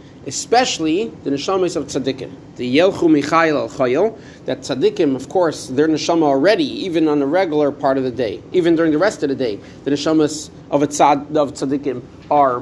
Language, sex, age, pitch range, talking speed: English, male, 40-59, 140-165 Hz, 185 wpm